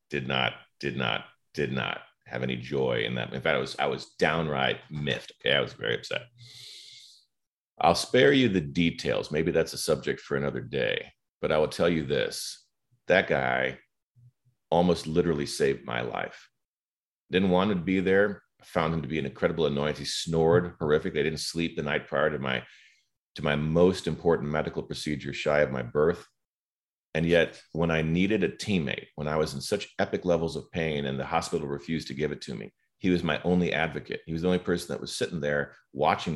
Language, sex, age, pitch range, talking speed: English, male, 40-59, 70-85 Hz, 205 wpm